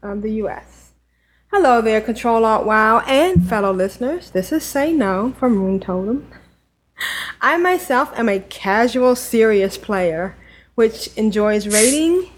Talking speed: 135 wpm